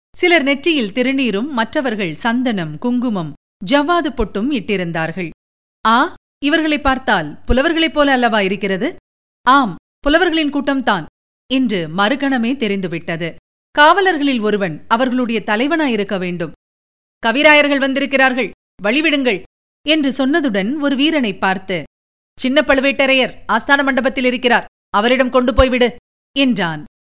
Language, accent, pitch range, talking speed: Tamil, native, 200-280 Hz, 95 wpm